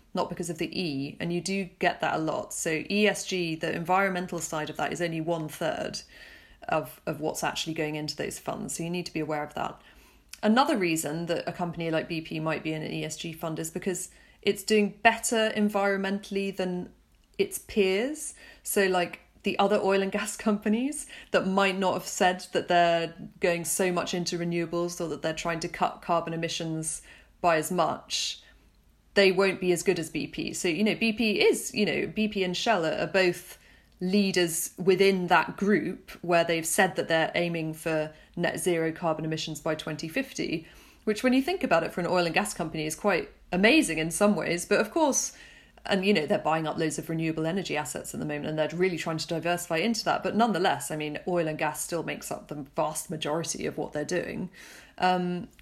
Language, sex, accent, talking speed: English, female, British, 205 wpm